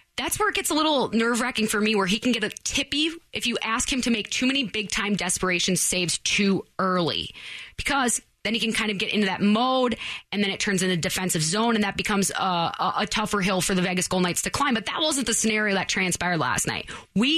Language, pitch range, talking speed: English, 190-230 Hz, 240 wpm